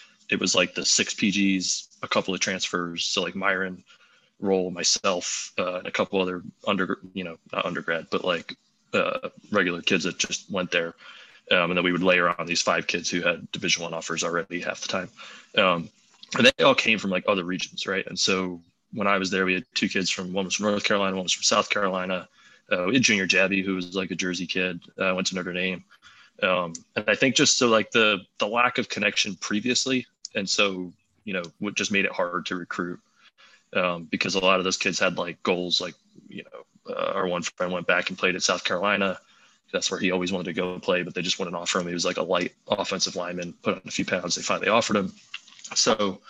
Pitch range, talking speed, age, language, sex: 90-95 Hz, 235 wpm, 20-39, English, male